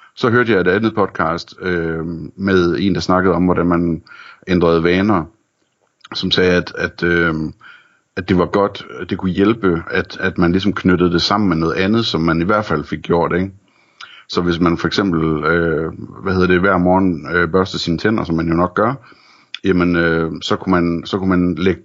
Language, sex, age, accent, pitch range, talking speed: Danish, male, 60-79, native, 85-95 Hz, 210 wpm